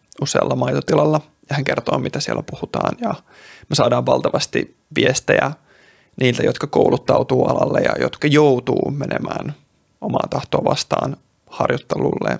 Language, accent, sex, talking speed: Finnish, native, male, 120 wpm